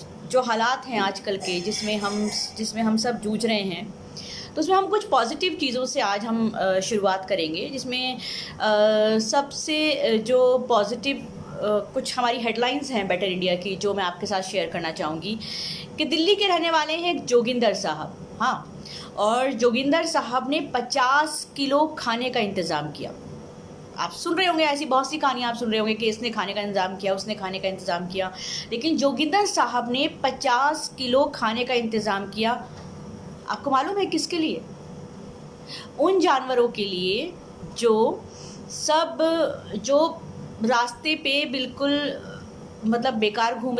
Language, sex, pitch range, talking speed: Hindi, female, 210-280 Hz, 155 wpm